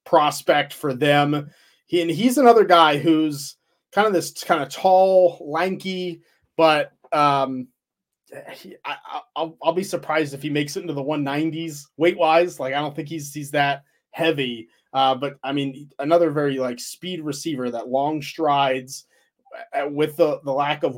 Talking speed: 170 wpm